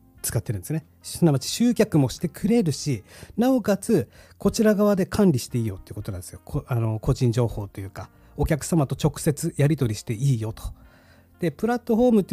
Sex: male